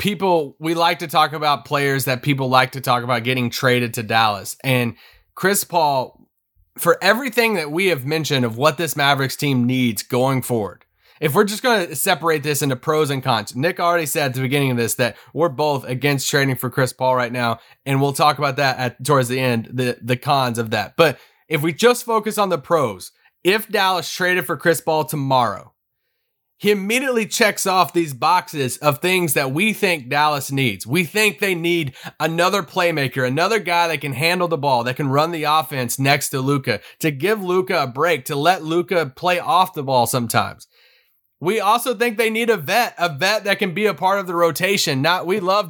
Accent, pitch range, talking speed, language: American, 135-190 Hz, 210 wpm, English